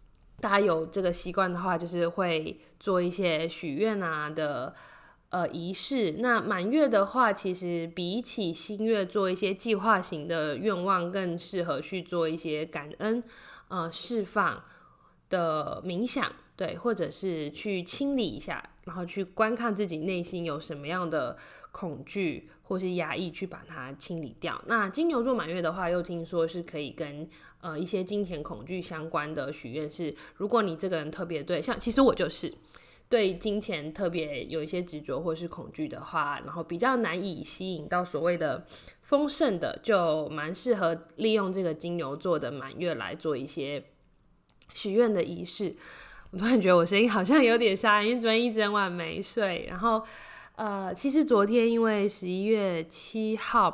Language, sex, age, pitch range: Chinese, female, 20-39, 165-215 Hz